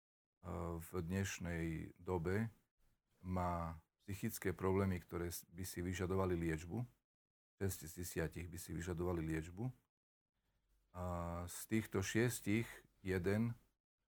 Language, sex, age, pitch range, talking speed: Slovak, male, 40-59, 85-100 Hz, 95 wpm